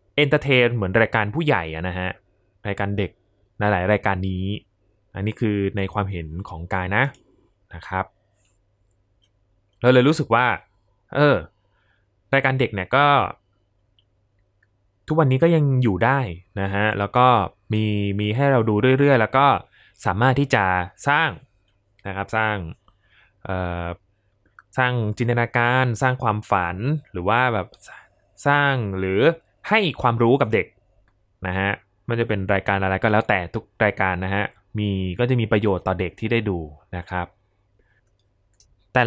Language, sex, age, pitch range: Thai, male, 20-39, 100-120 Hz